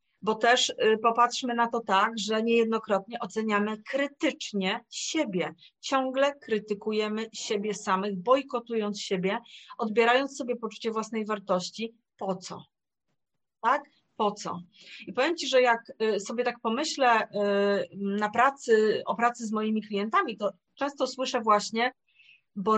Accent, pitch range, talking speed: native, 200-245 Hz, 120 wpm